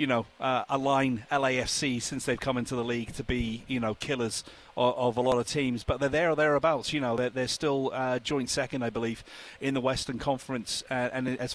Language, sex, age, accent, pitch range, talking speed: English, male, 40-59, British, 120-135 Hz, 255 wpm